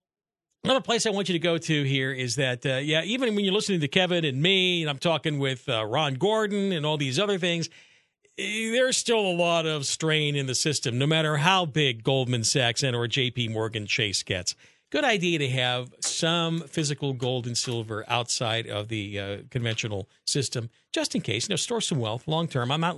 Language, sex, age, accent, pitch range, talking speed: English, male, 50-69, American, 130-180 Hz, 210 wpm